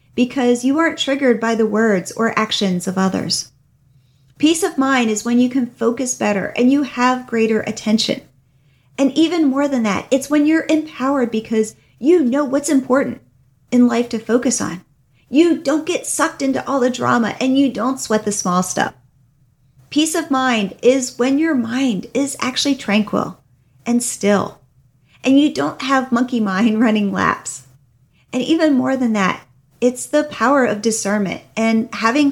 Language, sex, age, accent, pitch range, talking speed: English, female, 40-59, American, 195-265 Hz, 170 wpm